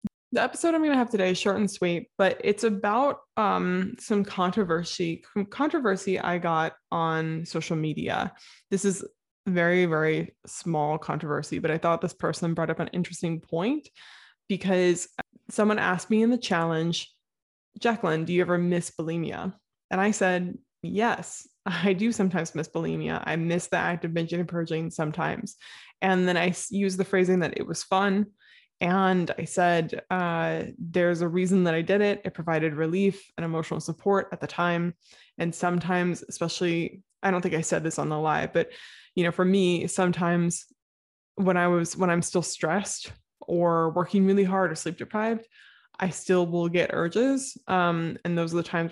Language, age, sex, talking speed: English, 20-39, female, 175 wpm